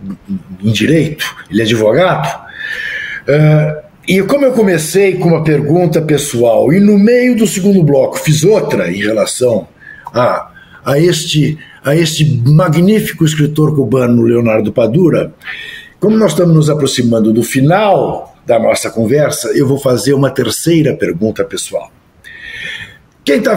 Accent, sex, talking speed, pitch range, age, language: Brazilian, male, 130 wpm, 130-200 Hz, 60-79, Portuguese